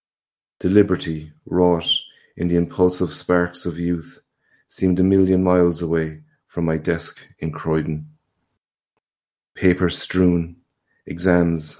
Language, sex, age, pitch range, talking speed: English, male, 30-49, 85-90 Hz, 105 wpm